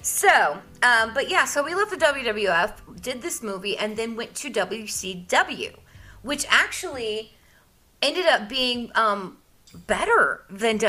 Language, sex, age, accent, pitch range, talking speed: English, female, 30-49, American, 185-230 Hz, 140 wpm